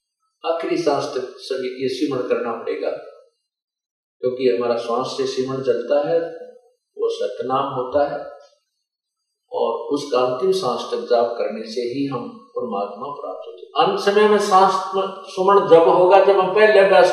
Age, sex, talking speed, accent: 50-69, male, 125 wpm, native